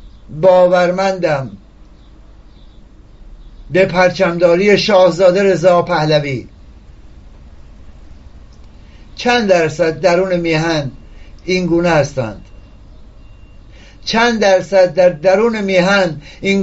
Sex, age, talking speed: male, 60-79, 70 wpm